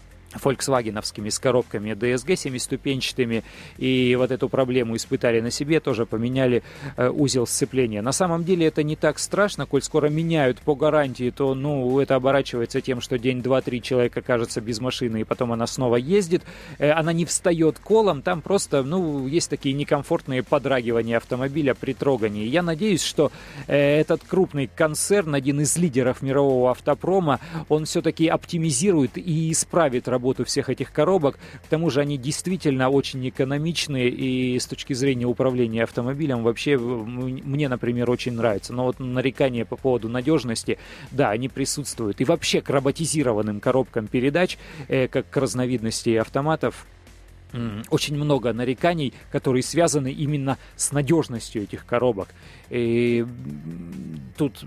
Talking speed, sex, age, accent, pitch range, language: 145 wpm, male, 30-49, native, 120-150 Hz, Russian